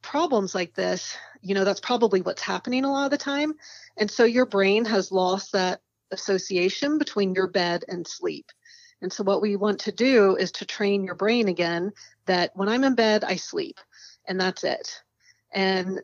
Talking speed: 190 wpm